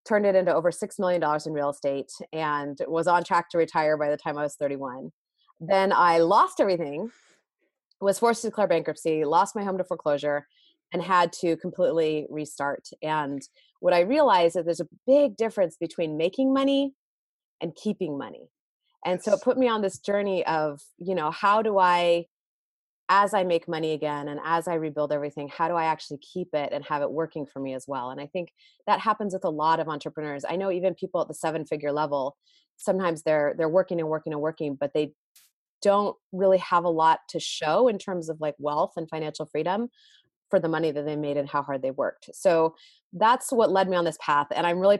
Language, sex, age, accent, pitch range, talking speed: English, female, 30-49, American, 155-195 Hz, 210 wpm